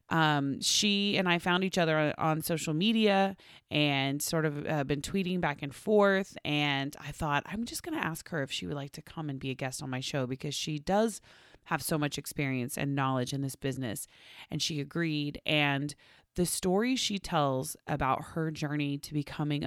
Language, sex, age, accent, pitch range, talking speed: English, female, 30-49, American, 140-175 Hz, 200 wpm